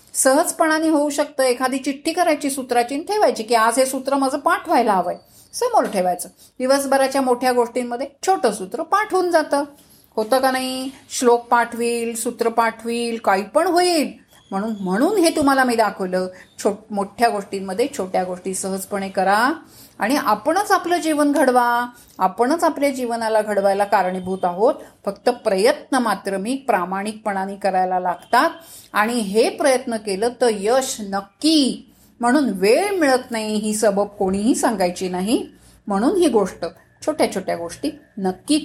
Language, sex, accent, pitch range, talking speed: Marathi, female, native, 210-290 Hz, 135 wpm